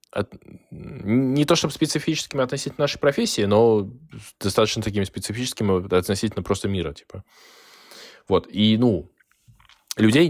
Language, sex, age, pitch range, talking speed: Russian, male, 20-39, 95-140 Hz, 110 wpm